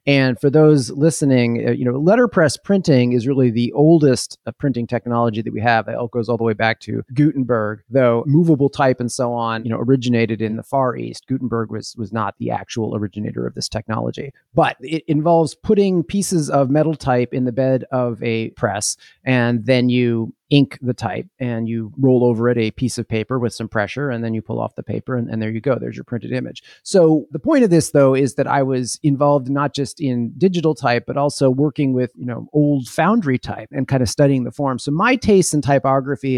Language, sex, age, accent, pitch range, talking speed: English, male, 30-49, American, 120-150 Hz, 220 wpm